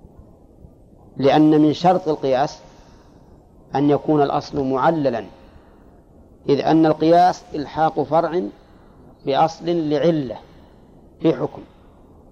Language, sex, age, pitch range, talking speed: Arabic, male, 40-59, 130-155 Hz, 85 wpm